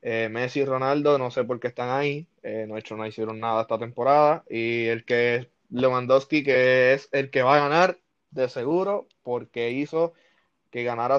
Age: 20-39